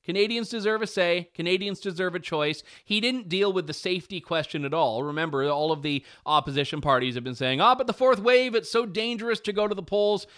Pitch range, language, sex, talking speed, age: 150-205 Hz, English, male, 225 wpm, 30-49